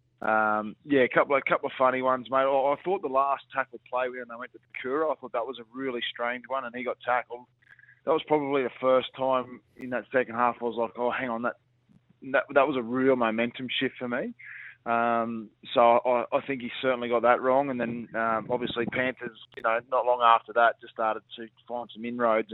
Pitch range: 115-130 Hz